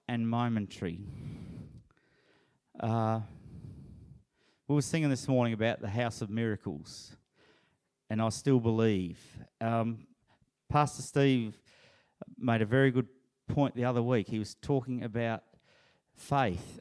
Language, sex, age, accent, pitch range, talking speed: English, male, 40-59, Australian, 115-140 Hz, 120 wpm